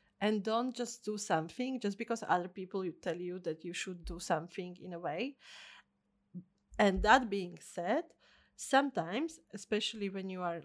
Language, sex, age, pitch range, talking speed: English, female, 30-49, 185-230 Hz, 160 wpm